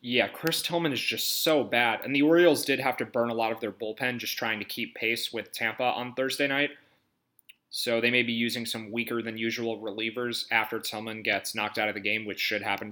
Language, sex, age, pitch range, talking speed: English, male, 30-49, 110-130 Hz, 225 wpm